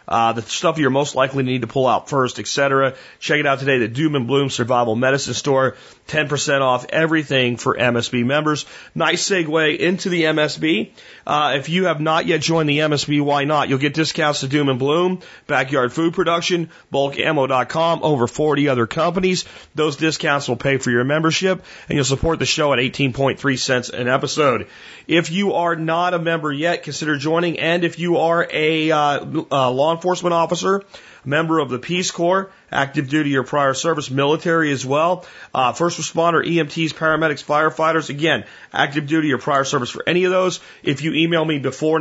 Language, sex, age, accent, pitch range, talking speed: English, male, 40-59, American, 130-165 Hz, 185 wpm